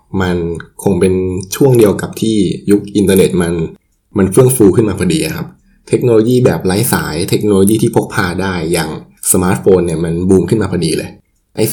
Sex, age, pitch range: male, 20-39, 95-115 Hz